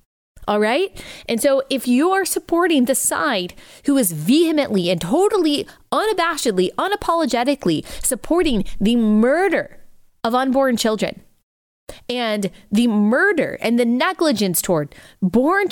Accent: American